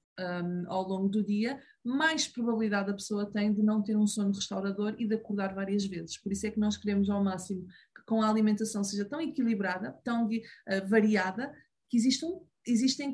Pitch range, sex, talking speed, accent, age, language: 190-215 Hz, female, 180 wpm, Brazilian, 20-39, Portuguese